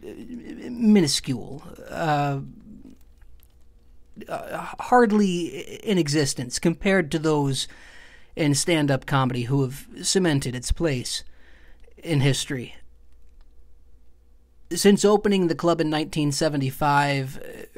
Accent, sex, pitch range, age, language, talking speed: American, male, 130-175 Hz, 40-59, English, 85 wpm